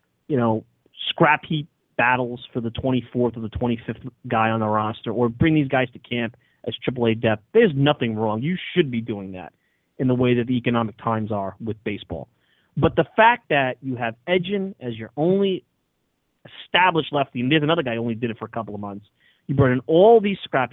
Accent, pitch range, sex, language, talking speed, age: American, 115-165 Hz, male, English, 210 wpm, 30-49